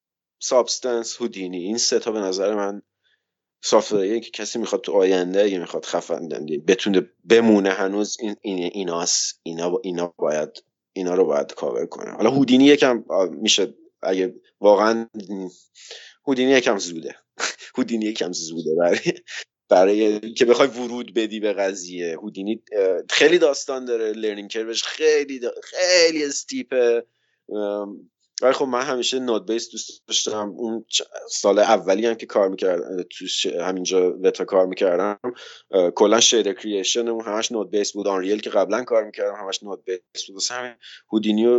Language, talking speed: Persian, 145 wpm